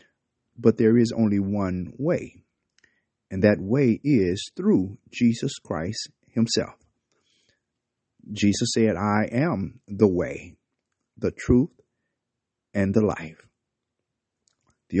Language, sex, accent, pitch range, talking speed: English, male, American, 105-140 Hz, 105 wpm